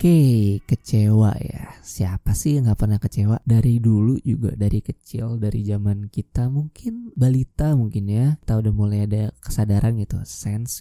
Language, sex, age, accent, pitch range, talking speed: Indonesian, male, 20-39, native, 110-140 Hz, 160 wpm